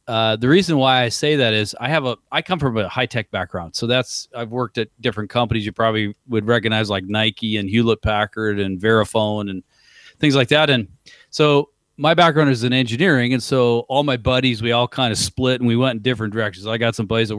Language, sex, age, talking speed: English, male, 40-59, 235 wpm